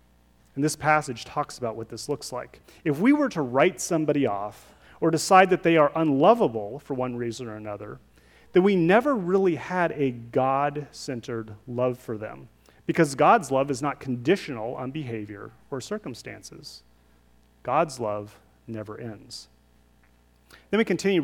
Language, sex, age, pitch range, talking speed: English, male, 30-49, 105-155 Hz, 155 wpm